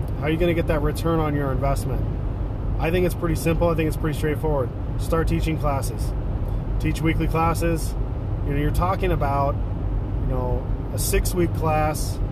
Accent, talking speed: American, 180 wpm